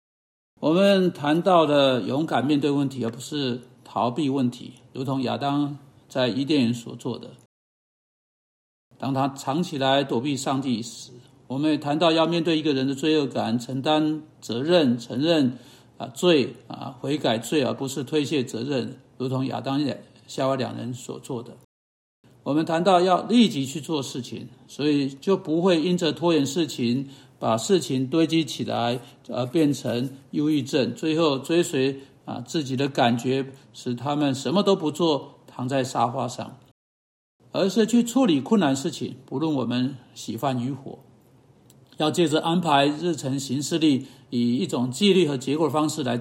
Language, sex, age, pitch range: Chinese, male, 50-69, 125-155 Hz